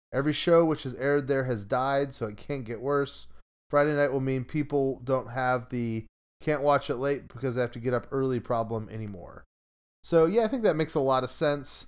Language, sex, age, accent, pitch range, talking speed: English, male, 30-49, American, 110-145 Hz, 170 wpm